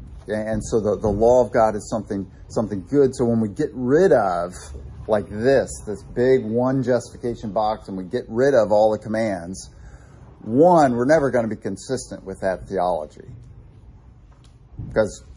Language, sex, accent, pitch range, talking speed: English, male, American, 90-115 Hz, 165 wpm